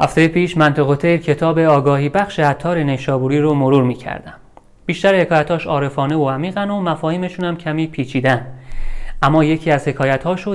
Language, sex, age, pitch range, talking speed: Persian, male, 30-49, 135-180 Hz, 140 wpm